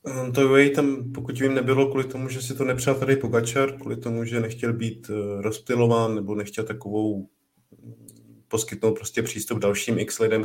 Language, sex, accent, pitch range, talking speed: Czech, male, native, 110-120 Hz, 165 wpm